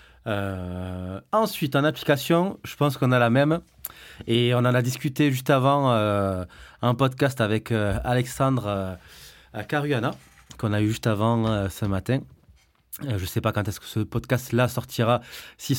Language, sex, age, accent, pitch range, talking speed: French, male, 20-39, French, 105-140 Hz, 170 wpm